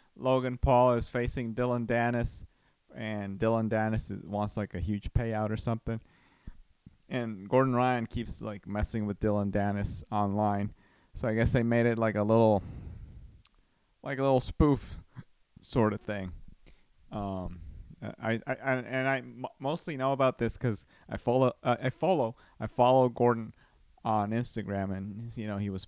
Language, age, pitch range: English, 30-49, 100-130 Hz